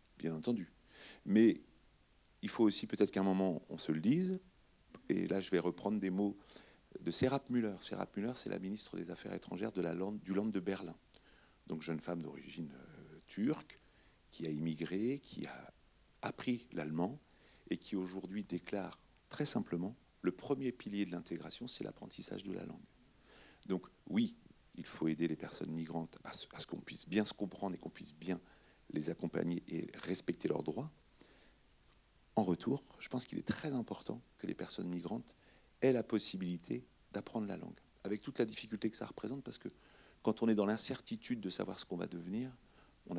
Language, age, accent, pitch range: French, 40-59, French, 90-110 Hz